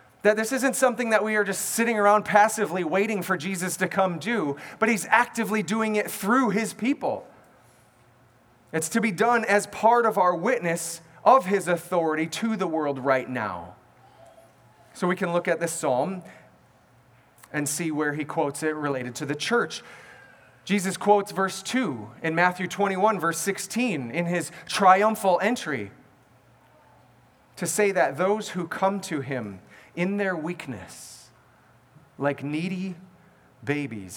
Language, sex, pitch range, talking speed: English, male, 150-210 Hz, 150 wpm